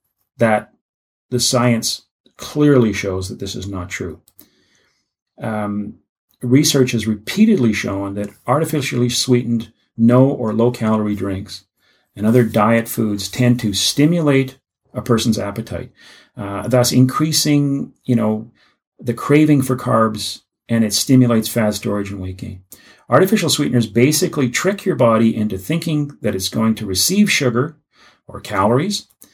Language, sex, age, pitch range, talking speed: English, male, 40-59, 105-125 Hz, 130 wpm